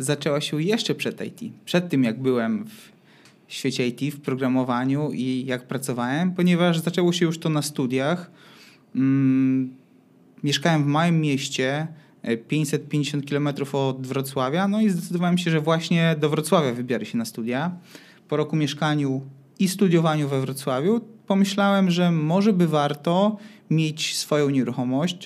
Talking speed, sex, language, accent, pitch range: 140 wpm, male, Polish, native, 135-175 Hz